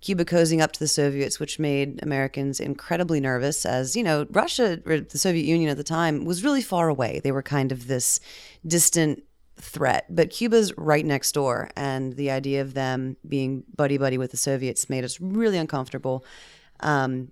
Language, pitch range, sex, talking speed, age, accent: English, 135-160 Hz, female, 180 wpm, 30-49, American